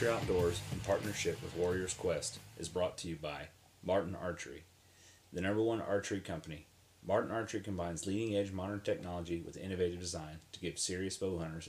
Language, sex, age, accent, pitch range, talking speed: English, male, 30-49, American, 85-100 Hz, 165 wpm